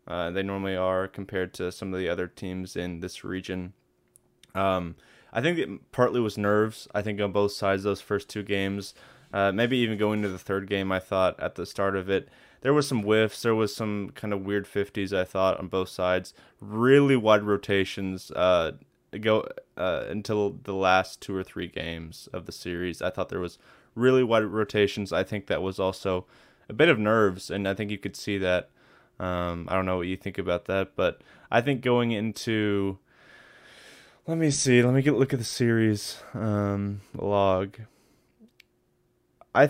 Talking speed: 195 wpm